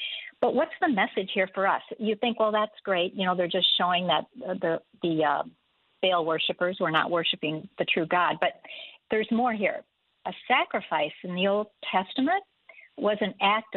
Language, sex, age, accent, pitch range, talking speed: English, female, 50-69, American, 180-230 Hz, 185 wpm